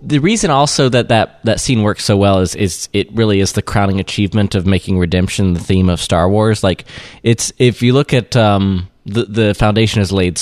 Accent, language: American, English